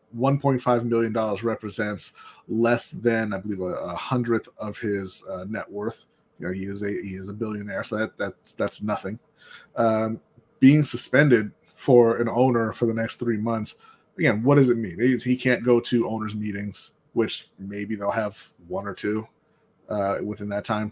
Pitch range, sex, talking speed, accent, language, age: 110-130 Hz, male, 180 wpm, American, English, 30-49